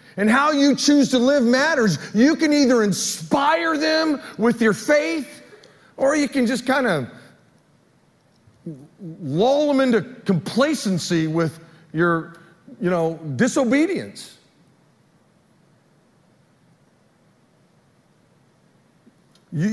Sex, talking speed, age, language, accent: male, 95 wpm, 40-59, English, American